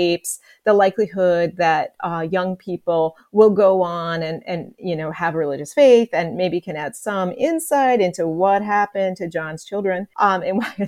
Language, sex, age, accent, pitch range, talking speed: English, female, 30-49, American, 180-260 Hz, 175 wpm